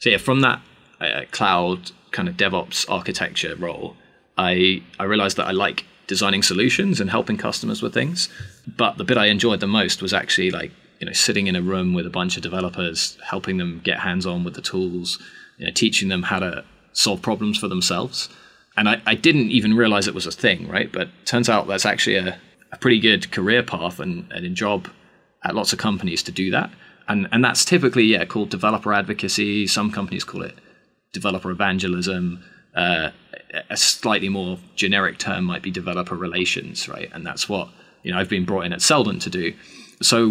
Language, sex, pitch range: English, male, 90-115 Hz